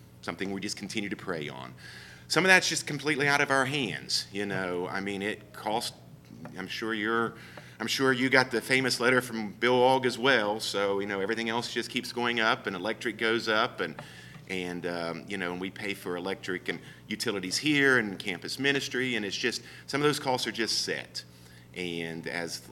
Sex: male